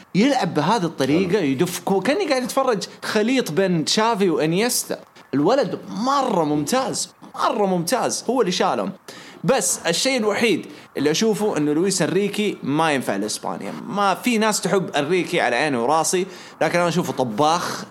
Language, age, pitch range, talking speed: English, 20-39, 155-210 Hz, 140 wpm